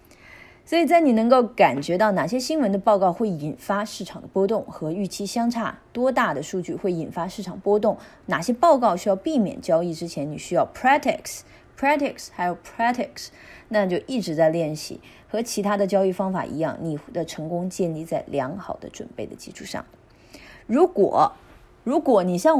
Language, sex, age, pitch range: Chinese, female, 20-39, 165-215 Hz